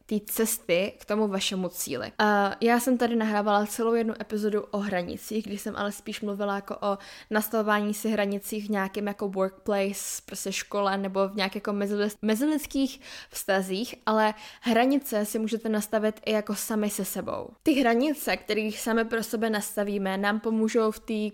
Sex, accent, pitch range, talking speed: female, native, 200-225 Hz, 165 wpm